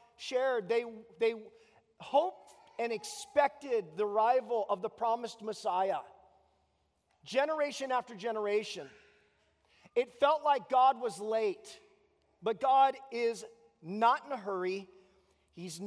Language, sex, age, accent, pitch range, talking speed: English, male, 40-59, American, 195-250 Hz, 110 wpm